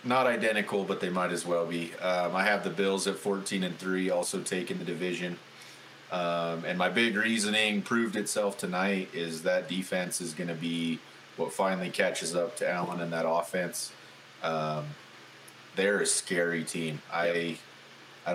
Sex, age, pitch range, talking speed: male, 30-49, 85-95 Hz, 170 wpm